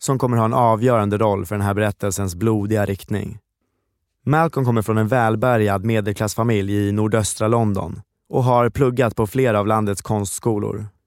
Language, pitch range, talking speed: Swedish, 105-120 Hz, 155 wpm